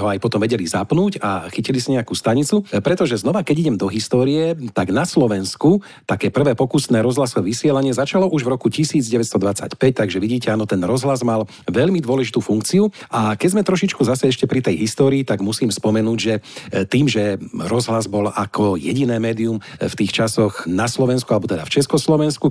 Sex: male